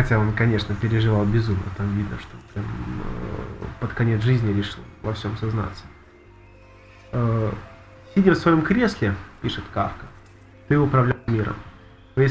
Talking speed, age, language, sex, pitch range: 130 wpm, 20-39, Russian, male, 105-140 Hz